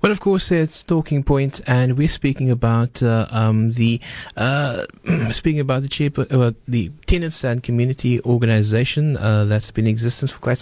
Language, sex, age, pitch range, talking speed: English, male, 30-49, 115-140 Hz, 175 wpm